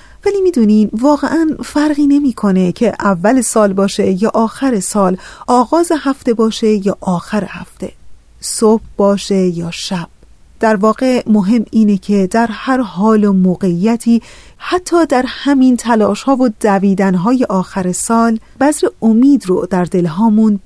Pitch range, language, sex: 195-250 Hz, Persian, female